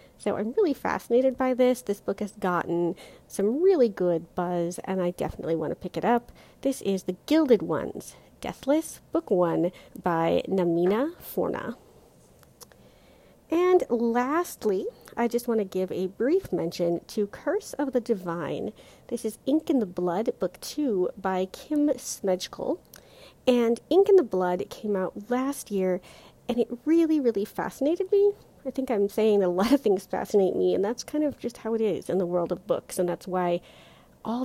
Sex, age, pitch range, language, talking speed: female, 40-59, 180-260 Hz, English, 175 wpm